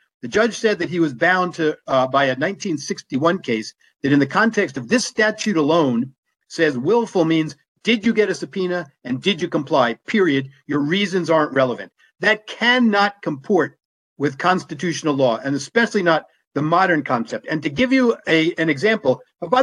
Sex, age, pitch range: male, 50-69, 145-200 Hz